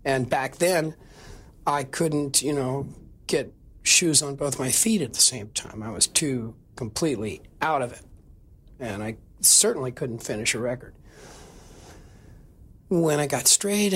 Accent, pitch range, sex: American, 125-165 Hz, male